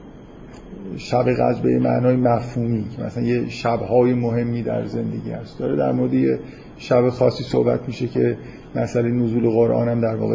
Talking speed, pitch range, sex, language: 155 wpm, 120-145 Hz, male, Persian